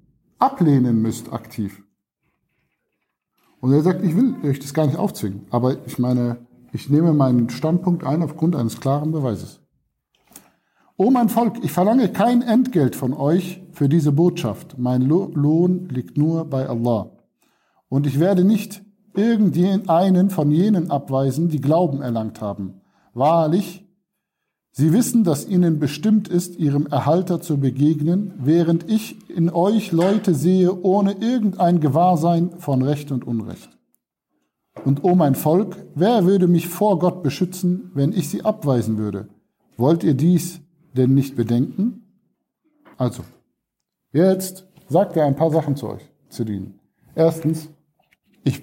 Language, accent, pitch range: German, German, 130-180 Hz